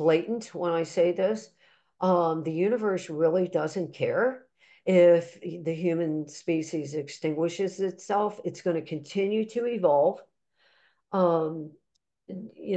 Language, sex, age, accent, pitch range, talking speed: English, female, 50-69, American, 165-190 Hz, 115 wpm